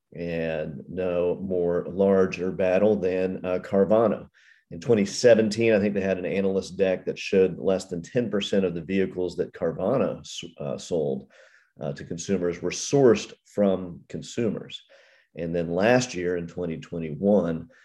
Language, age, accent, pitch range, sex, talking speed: English, 40-59, American, 85-105 Hz, male, 140 wpm